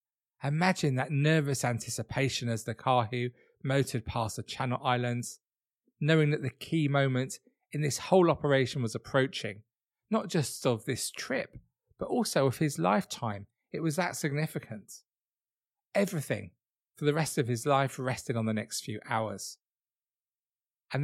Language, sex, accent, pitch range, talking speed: English, male, British, 115-150 Hz, 150 wpm